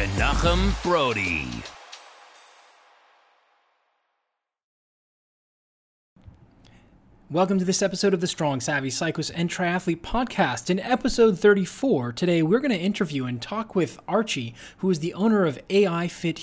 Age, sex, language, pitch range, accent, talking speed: 20-39, male, English, 140-195 Hz, American, 115 wpm